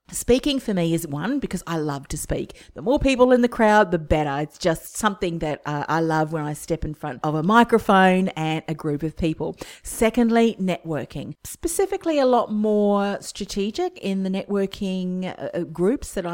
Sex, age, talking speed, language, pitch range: female, 40-59, 185 wpm, English, 155-195 Hz